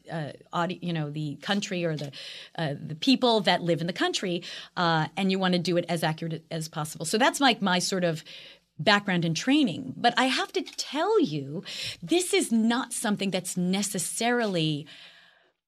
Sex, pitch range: female, 170-220 Hz